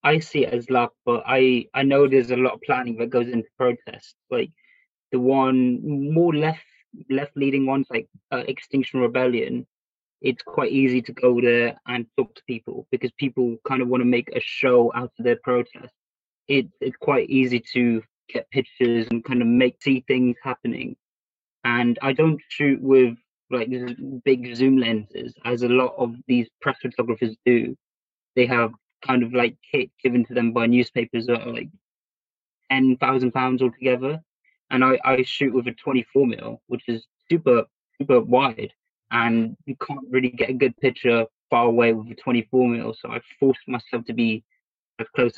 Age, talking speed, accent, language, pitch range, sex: 20-39, 180 wpm, British, English, 120-135 Hz, male